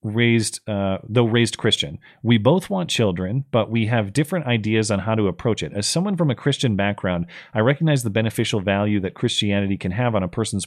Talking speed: 210 wpm